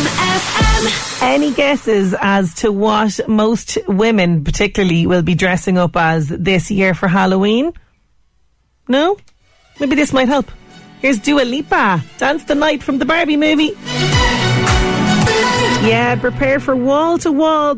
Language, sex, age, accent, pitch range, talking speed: English, female, 30-49, Irish, 175-230 Hz, 120 wpm